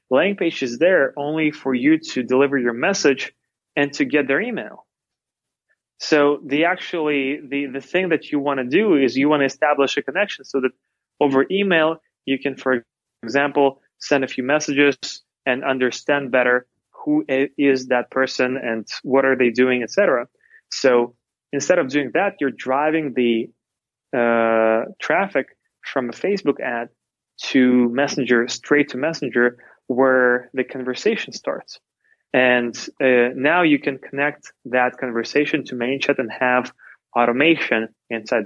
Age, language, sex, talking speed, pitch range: 20-39, English, male, 155 wpm, 120-145 Hz